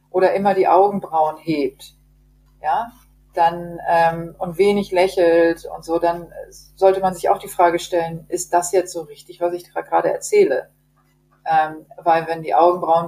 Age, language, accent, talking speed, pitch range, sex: 40-59, German, German, 165 wpm, 160-180 Hz, female